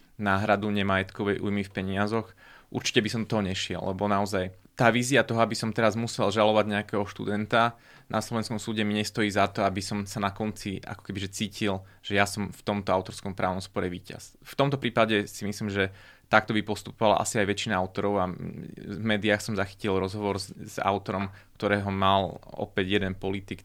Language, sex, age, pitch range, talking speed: Slovak, male, 20-39, 100-115 Hz, 185 wpm